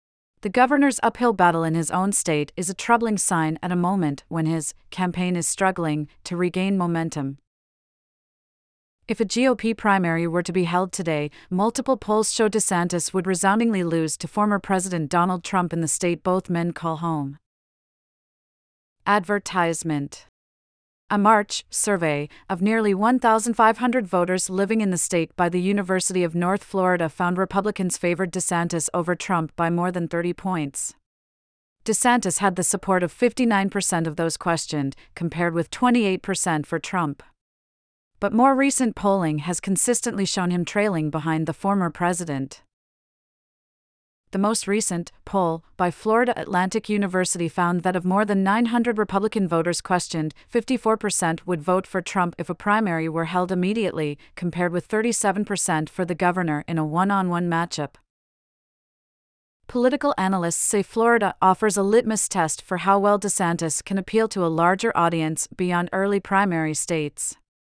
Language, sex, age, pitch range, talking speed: English, female, 30-49, 165-205 Hz, 150 wpm